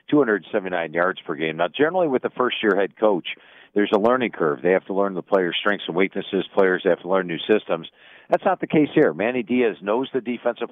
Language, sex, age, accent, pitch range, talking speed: English, male, 50-69, American, 95-120 Hz, 225 wpm